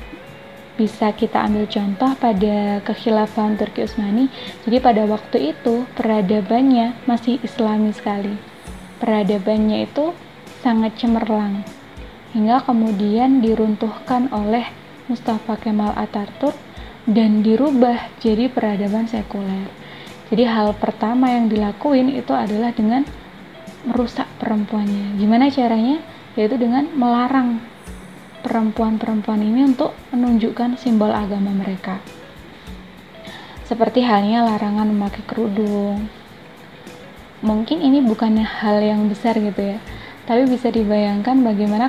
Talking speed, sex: 100 wpm, female